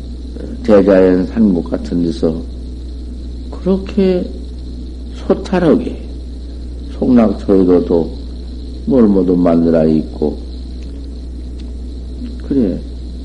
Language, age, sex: Korean, 50-69, male